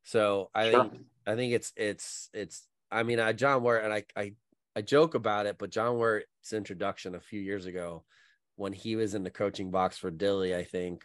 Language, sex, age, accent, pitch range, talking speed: English, male, 30-49, American, 95-115 Hz, 210 wpm